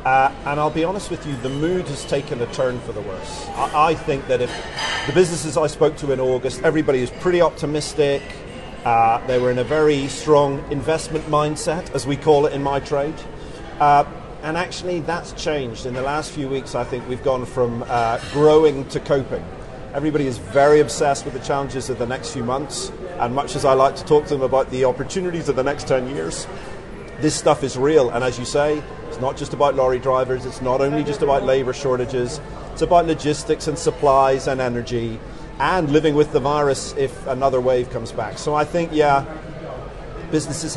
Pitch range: 130-155 Hz